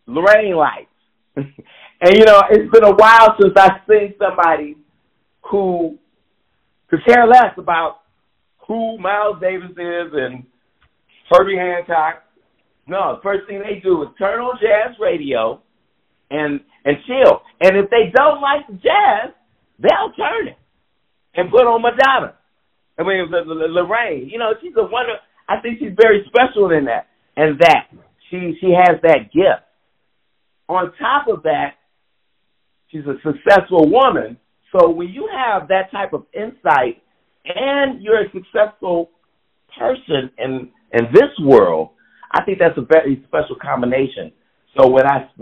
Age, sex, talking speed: 50-69, male, 145 wpm